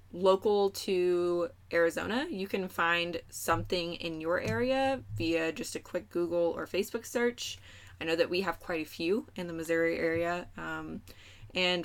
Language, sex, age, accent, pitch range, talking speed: English, female, 20-39, American, 165-205 Hz, 160 wpm